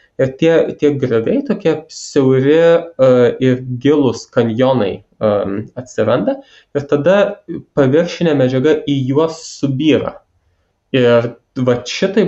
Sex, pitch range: male, 110-140 Hz